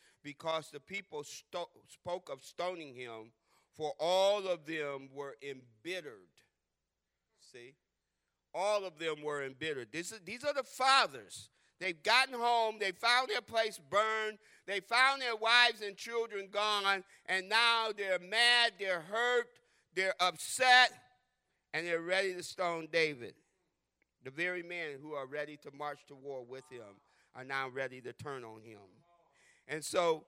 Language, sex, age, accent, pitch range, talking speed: English, male, 50-69, American, 145-195 Hz, 145 wpm